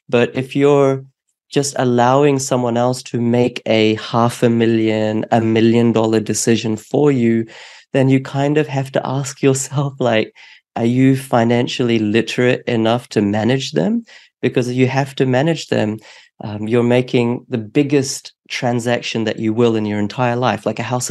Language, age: English, 30-49